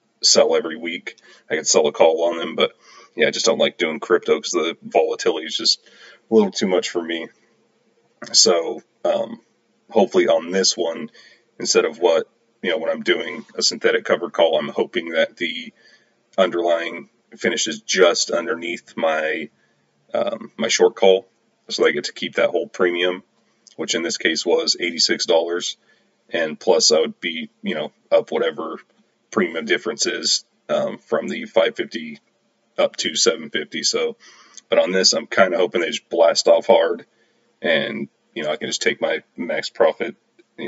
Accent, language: American, English